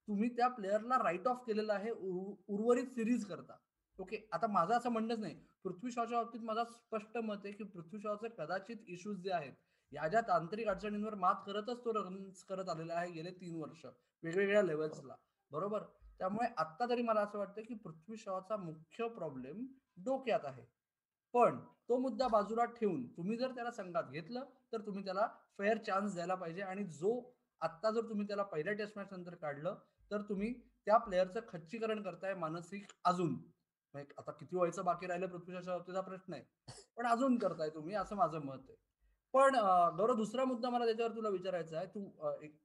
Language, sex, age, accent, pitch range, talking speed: Marathi, male, 20-39, native, 170-220 Hz, 145 wpm